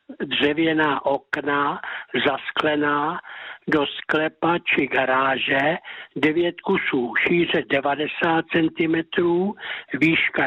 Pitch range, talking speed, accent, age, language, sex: 150-180 Hz, 75 wpm, native, 60-79, Czech, male